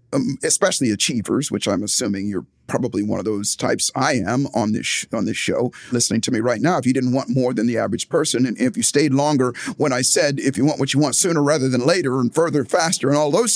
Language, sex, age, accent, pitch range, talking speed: English, male, 50-69, American, 115-150 Hz, 255 wpm